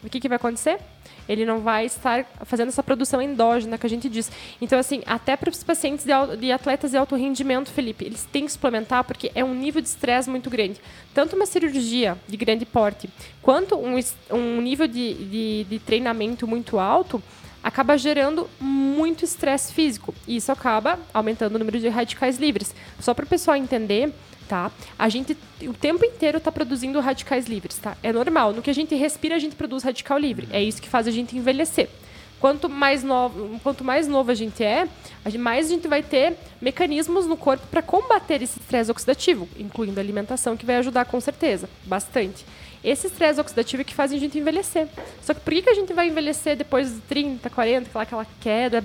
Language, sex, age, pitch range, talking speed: Portuguese, female, 10-29, 230-300 Hz, 200 wpm